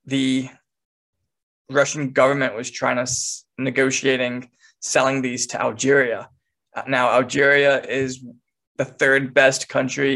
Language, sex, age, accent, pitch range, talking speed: English, male, 20-39, American, 130-140 Hz, 110 wpm